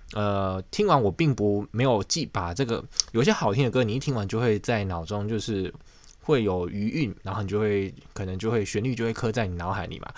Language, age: Chinese, 20-39